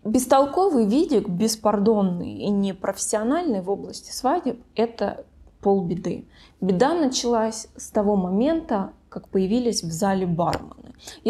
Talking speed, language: 105 wpm, Russian